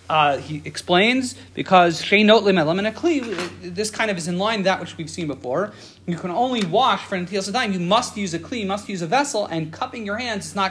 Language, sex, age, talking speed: English, male, 40-59, 220 wpm